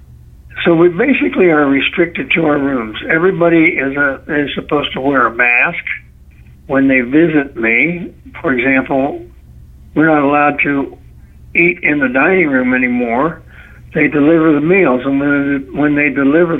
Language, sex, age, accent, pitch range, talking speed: English, male, 60-79, American, 135-165 Hz, 150 wpm